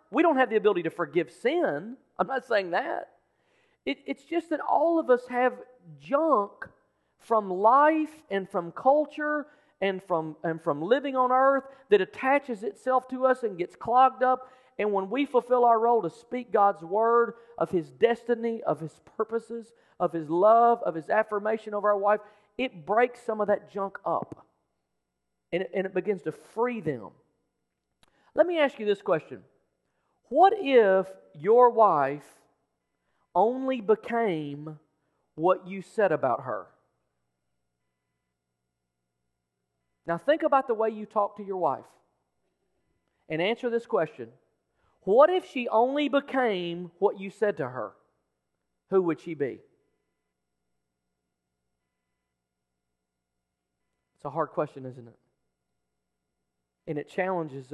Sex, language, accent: male, English, American